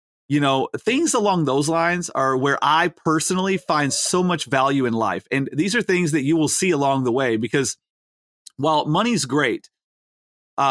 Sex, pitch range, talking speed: male, 130-160 Hz, 180 wpm